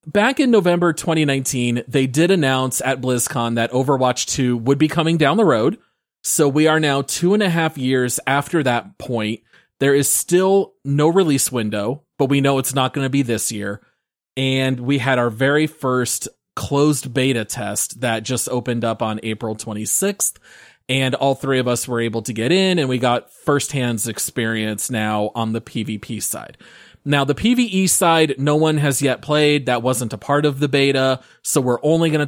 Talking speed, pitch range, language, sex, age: 190 wpm, 120-150 Hz, English, male, 30-49